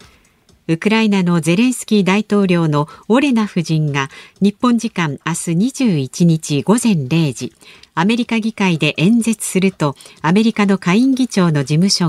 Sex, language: female, Japanese